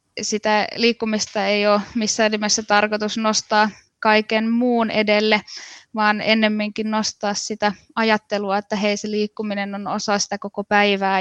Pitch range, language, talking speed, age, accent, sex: 205-220 Hz, Finnish, 135 wpm, 20-39, native, female